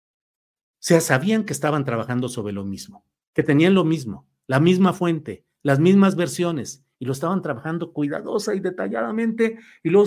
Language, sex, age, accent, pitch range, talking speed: Spanish, male, 50-69, Mexican, 135-195 Hz, 155 wpm